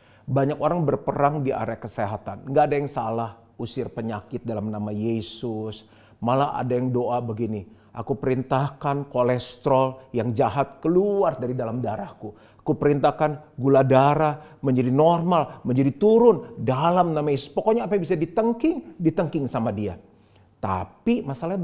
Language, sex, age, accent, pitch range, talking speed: Indonesian, male, 40-59, native, 115-160 Hz, 140 wpm